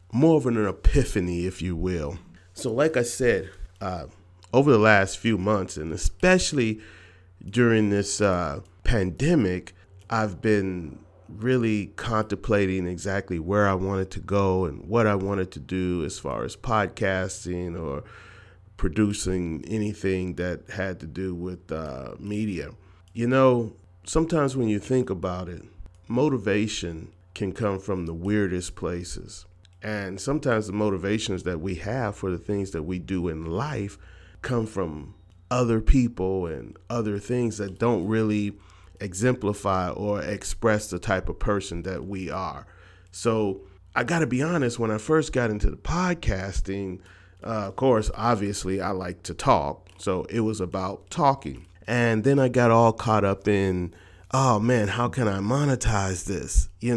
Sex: male